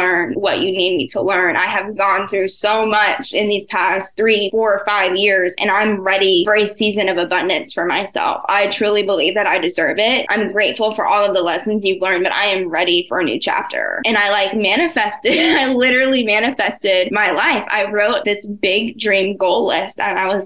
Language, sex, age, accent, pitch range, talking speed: English, female, 10-29, American, 195-245 Hz, 215 wpm